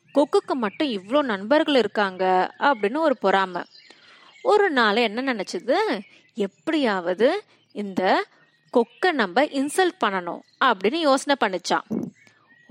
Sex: female